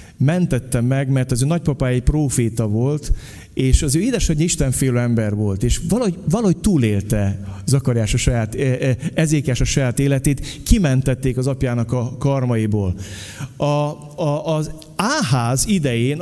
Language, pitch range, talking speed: Hungarian, 135-195 Hz, 135 wpm